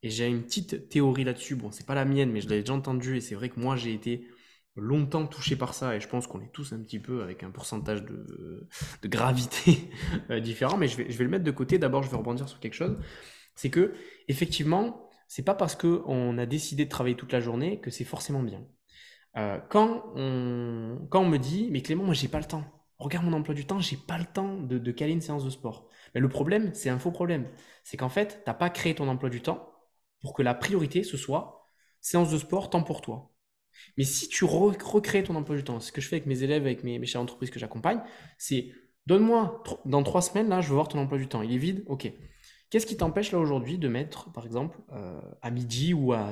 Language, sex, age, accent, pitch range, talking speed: French, male, 20-39, French, 120-175 Hz, 245 wpm